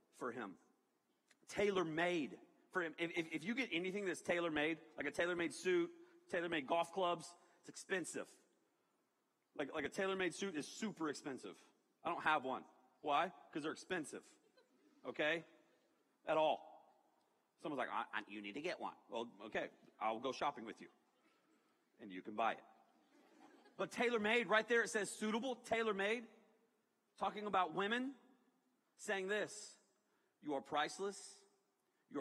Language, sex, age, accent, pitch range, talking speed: English, male, 40-59, American, 135-205 Hz, 145 wpm